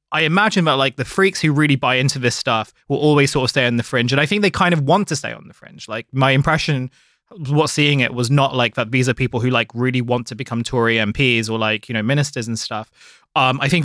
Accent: British